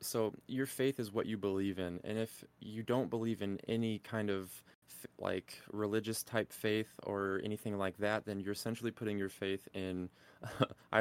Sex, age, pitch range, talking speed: male, 20-39, 95-105 Hz, 180 wpm